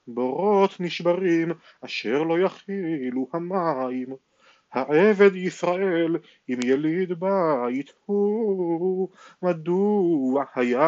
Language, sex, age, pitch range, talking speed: Hebrew, male, 40-59, 150-185 Hz, 75 wpm